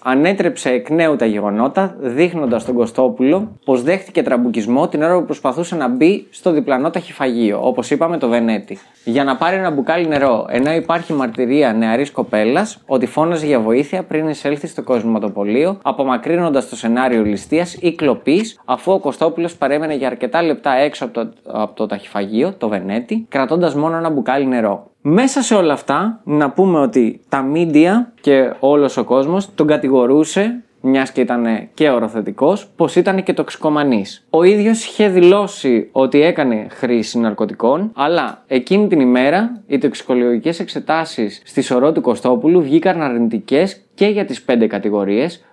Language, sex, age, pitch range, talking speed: Greek, male, 20-39, 125-175 Hz, 155 wpm